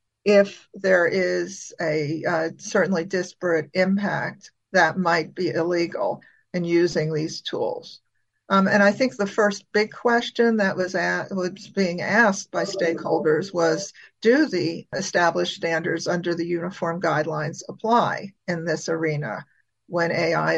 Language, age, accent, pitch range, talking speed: English, 50-69, American, 170-200 Hz, 135 wpm